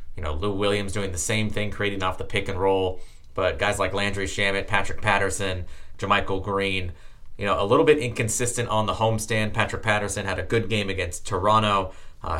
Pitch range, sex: 95-110 Hz, male